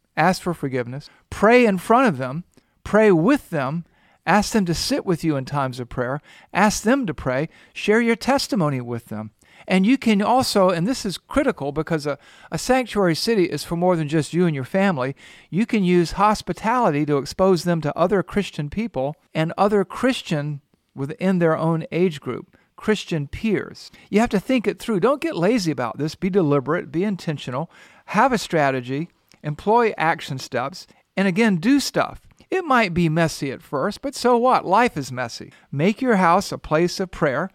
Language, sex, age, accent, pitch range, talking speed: English, male, 50-69, American, 150-205 Hz, 185 wpm